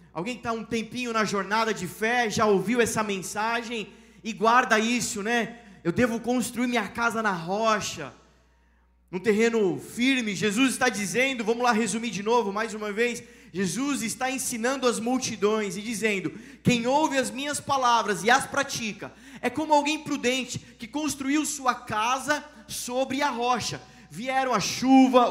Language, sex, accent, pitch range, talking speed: Portuguese, male, Brazilian, 210-265 Hz, 160 wpm